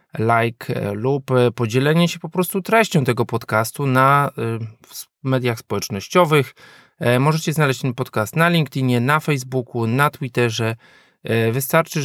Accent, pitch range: native, 120-150 Hz